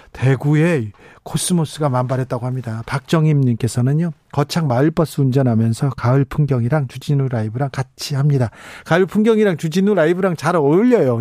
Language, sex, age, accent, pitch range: Korean, male, 40-59, native, 130-175 Hz